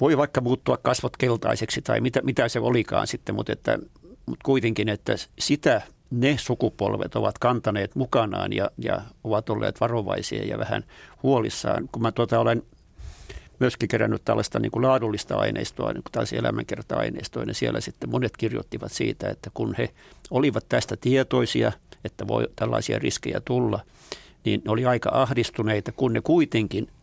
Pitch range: 105-125 Hz